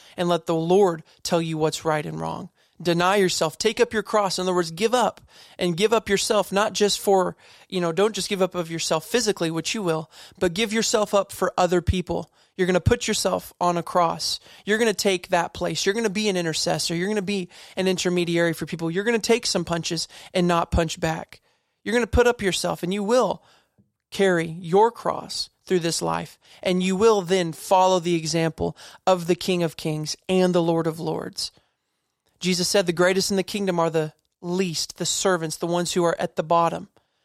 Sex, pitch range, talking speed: male, 170-200 Hz, 220 wpm